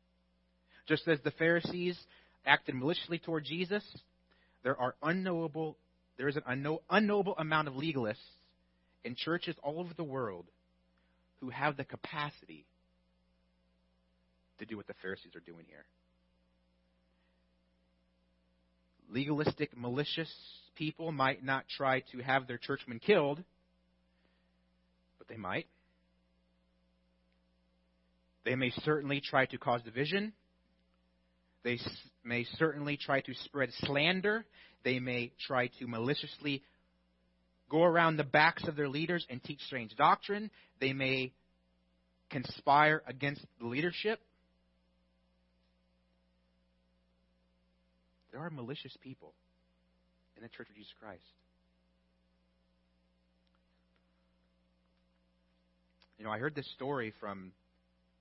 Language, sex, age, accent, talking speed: English, male, 30-49, American, 105 wpm